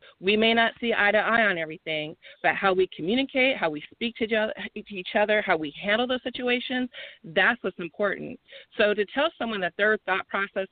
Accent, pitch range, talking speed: American, 190-235 Hz, 195 wpm